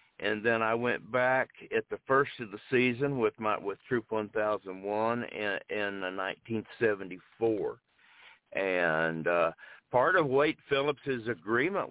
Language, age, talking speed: English, 50-69, 150 wpm